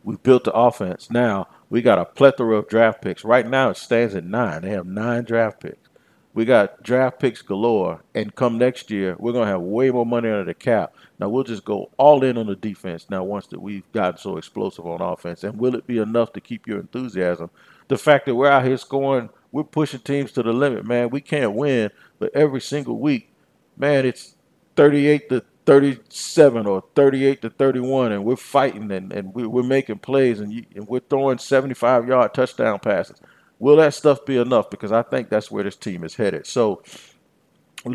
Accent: American